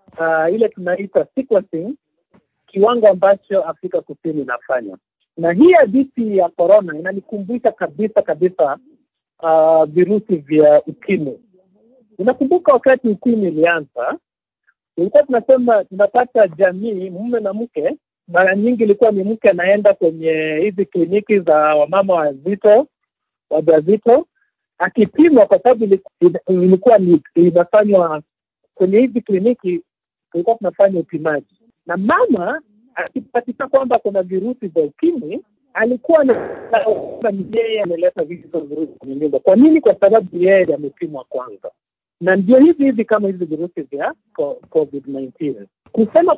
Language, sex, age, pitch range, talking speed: Swahili, male, 50-69, 175-260 Hz, 115 wpm